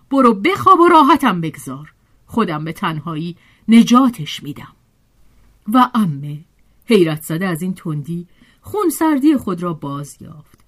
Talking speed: 120 wpm